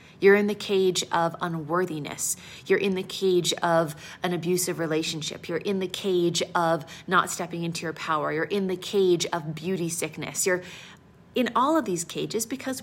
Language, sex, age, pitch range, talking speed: English, female, 30-49, 160-195 Hz, 180 wpm